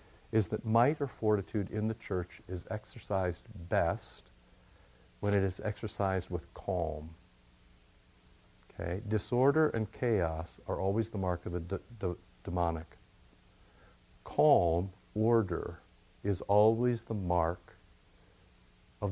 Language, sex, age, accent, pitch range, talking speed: English, male, 60-79, American, 90-115 Hz, 115 wpm